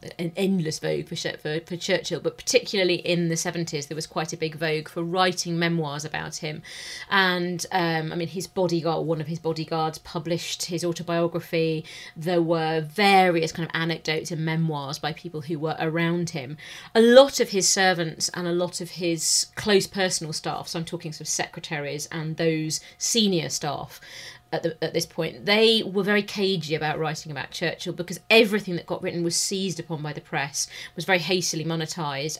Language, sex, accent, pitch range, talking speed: English, female, British, 160-180 Hz, 185 wpm